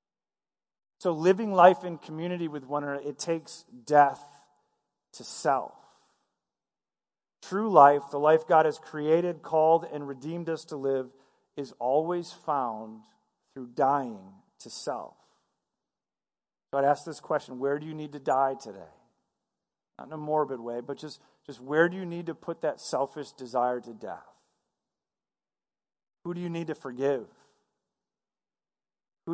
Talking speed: 145 wpm